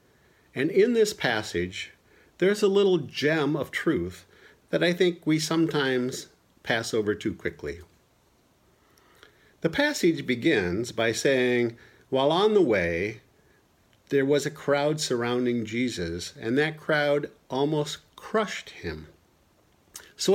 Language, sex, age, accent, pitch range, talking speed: English, male, 50-69, American, 110-170 Hz, 120 wpm